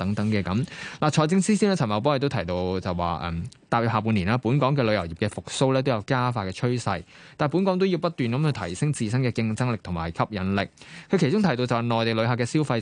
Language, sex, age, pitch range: Chinese, male, 20-39, 95-130 Hz